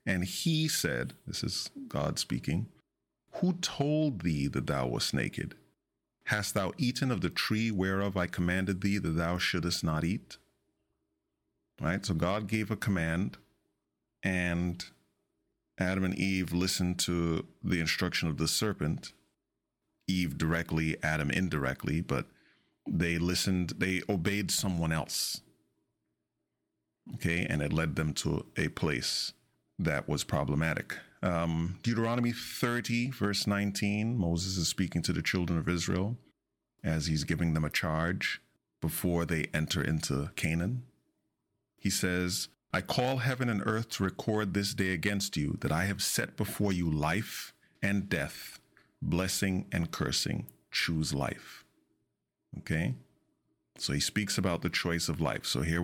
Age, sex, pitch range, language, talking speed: 30-49, male, 80-100 Hz, English, 140 wpm